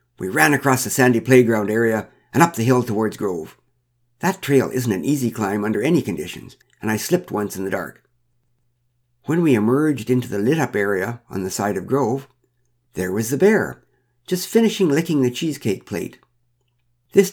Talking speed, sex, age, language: 180 wpm, male, 60-79, English